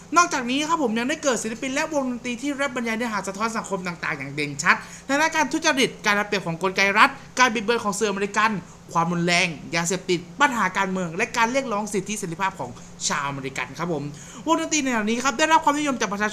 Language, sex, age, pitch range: Thai, male, 20-39, 175-255 Hz